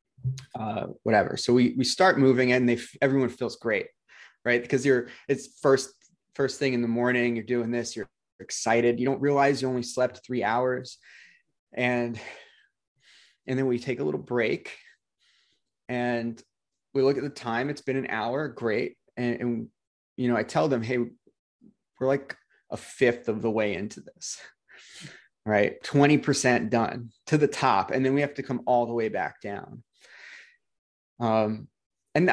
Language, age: English, 30-49